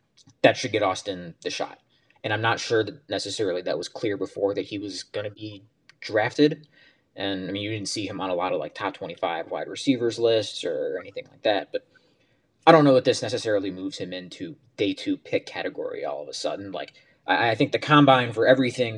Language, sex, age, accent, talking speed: English, male, 20-39, American, 220 wpm